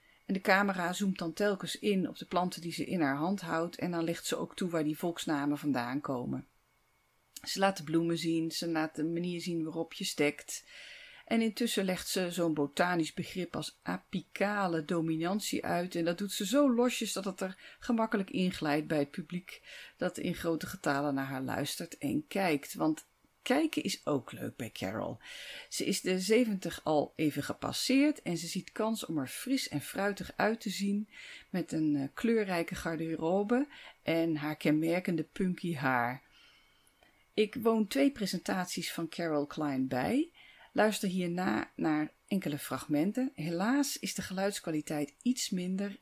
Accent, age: Dutch, 40-59